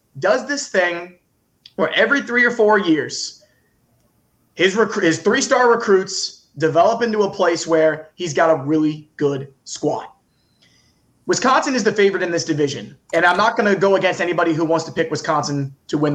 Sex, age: male, 20-39